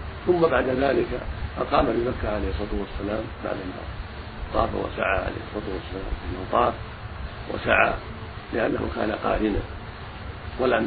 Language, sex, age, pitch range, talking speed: Arabic, male, 50-69, 90-110 Hz, 115 wpm